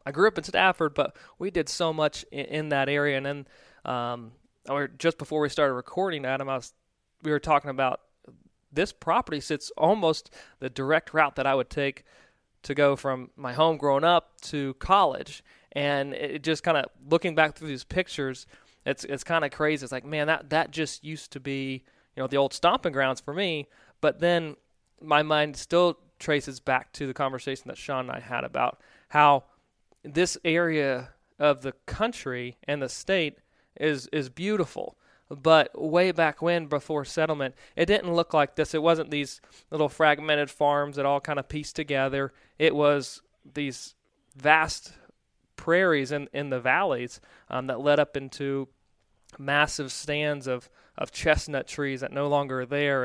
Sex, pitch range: male, 135-155 Hz